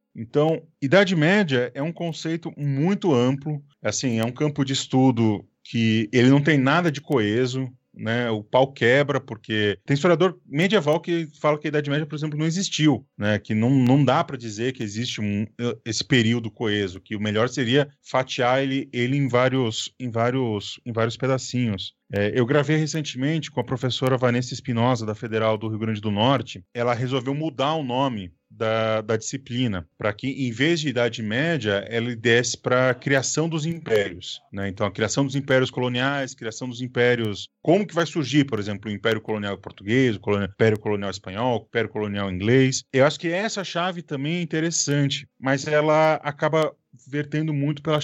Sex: male